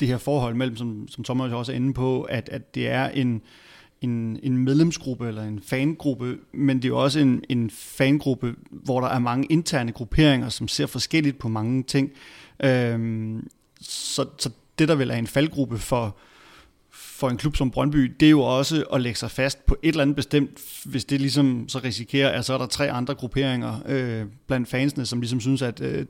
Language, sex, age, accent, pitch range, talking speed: Danish, male, 30-49, native, 120-140 Hz, 210 wpm